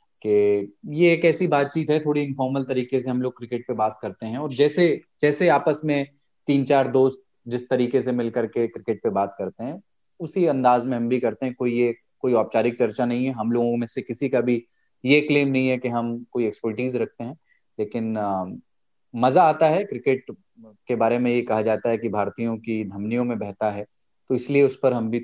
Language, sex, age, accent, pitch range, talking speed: Hindi, male, 20-39, native, 110-145 Hz, 220 wpm